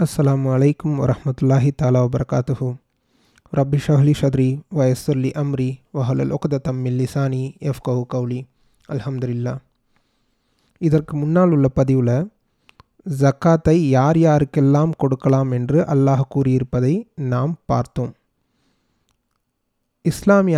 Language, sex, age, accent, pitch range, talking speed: Tamil, male, 30-49, native, 135-160 Hz, 85 wpm